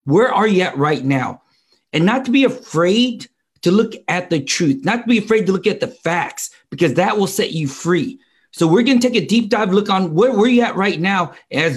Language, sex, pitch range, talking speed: English, male, 165-230 Hz, 240 wpm